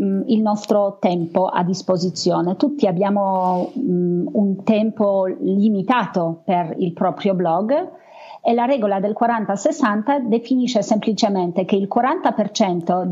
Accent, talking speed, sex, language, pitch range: native, 110 wpm, female, Italian, 185-230 Hz